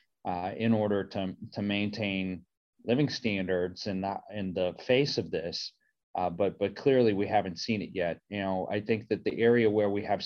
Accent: American